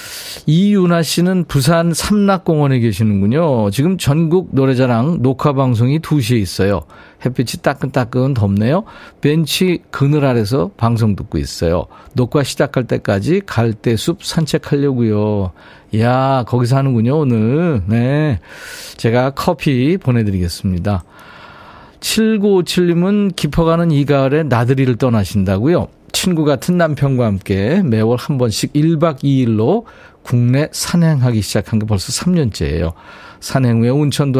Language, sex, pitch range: Korean, male, 110-155 Hz